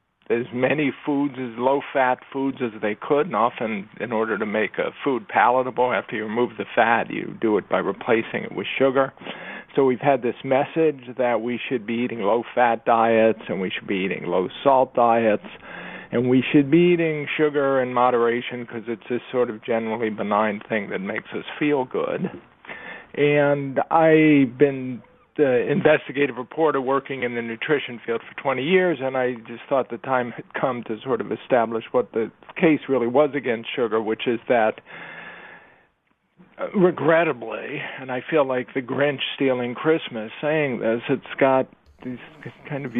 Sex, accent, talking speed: male, American, 175 wpm